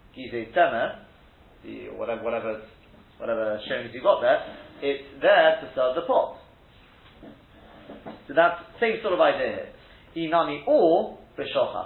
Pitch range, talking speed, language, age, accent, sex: 120-170 Hz, 125 wpm, English, 40-59, British, male